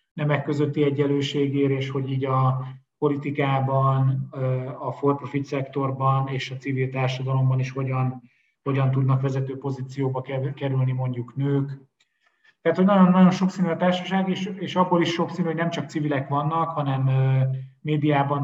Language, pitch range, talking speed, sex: Hungarian, 130-145 Hz, 145 wpm, male